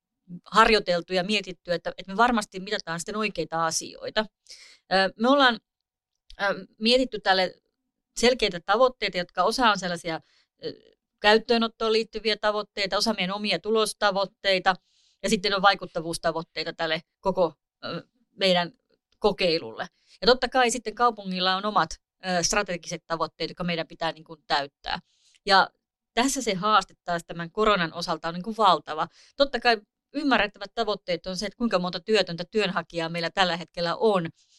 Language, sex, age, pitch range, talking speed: Finnish, female, 30-49, 175-220 Hz, 130 wpm